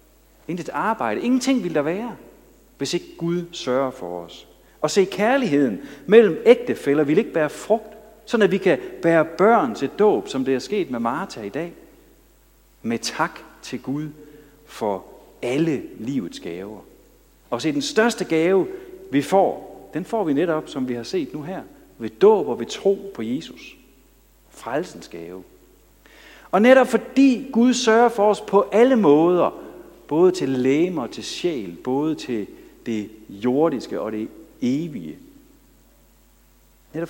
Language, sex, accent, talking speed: Danish, male, native, 150 wpm